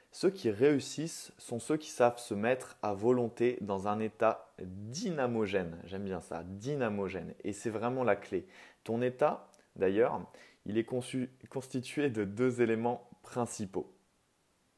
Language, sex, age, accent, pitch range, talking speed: French, male, 20-39, French, 105-130 Hz, 140 wpm